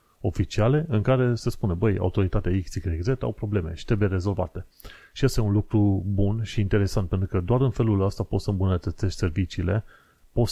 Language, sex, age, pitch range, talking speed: Romanian, male, 30-49, 90-110 Hz, 185 wpm